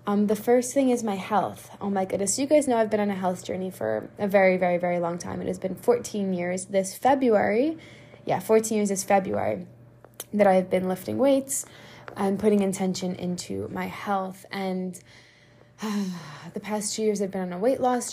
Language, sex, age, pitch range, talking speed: English, female, 10-29, 190-240 Hz, 205 wpm